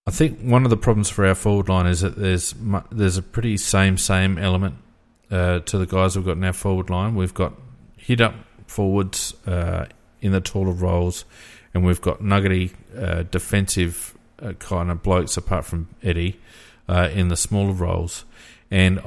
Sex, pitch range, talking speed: male, 90-105 Hz, 175 wpm